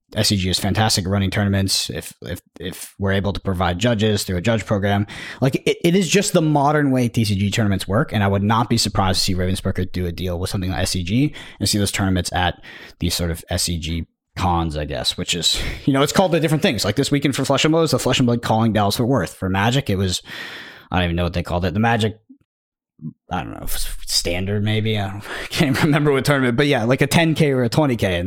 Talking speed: 245 wpm